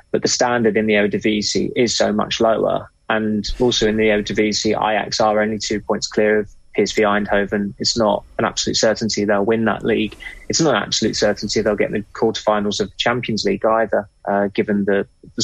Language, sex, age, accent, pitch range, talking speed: English, male, 20-39, British, 100-110 Hz, 200 wpm